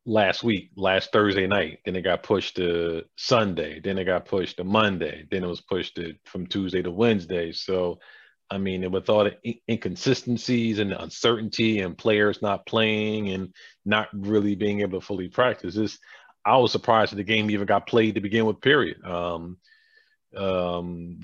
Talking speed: 180 wpm